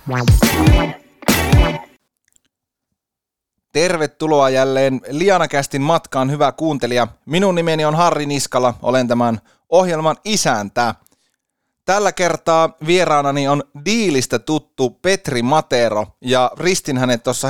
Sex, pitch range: male, 120-155 Hz